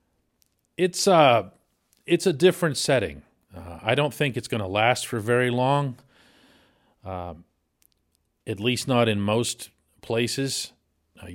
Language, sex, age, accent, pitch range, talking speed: English, male, 40-59, American, 90-115 Hz, 125 wpm